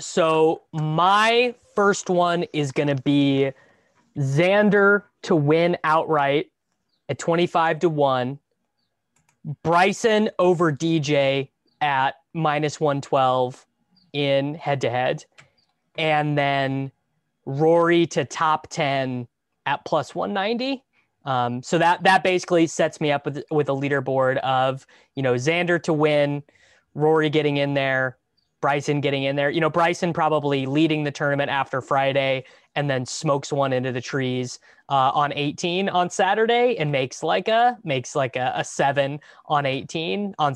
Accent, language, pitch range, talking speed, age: American, English, 135-170 Hz, 135 wpm, 20-39